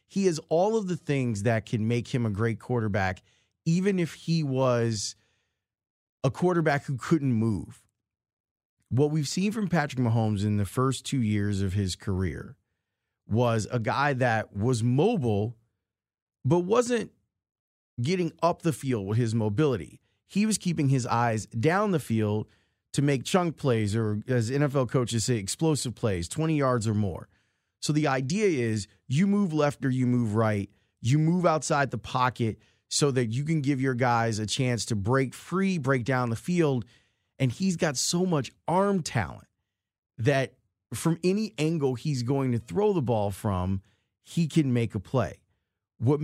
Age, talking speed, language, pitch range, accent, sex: 30-49, 170 wpm, English, 110-150 Hz, American, male